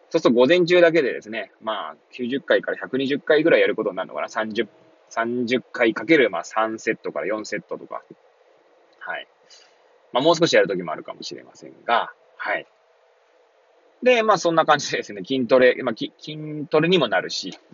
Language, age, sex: Japanese, 20-39, male